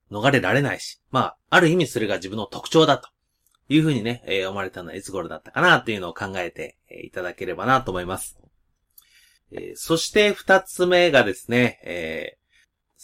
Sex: male